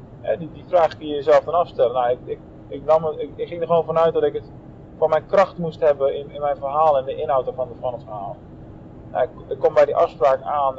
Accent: Dutch